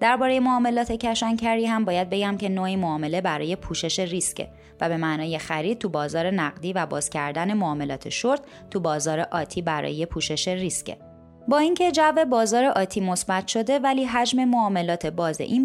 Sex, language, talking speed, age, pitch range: female, Persian, 160 wpm, 20-39, 165-225 Hz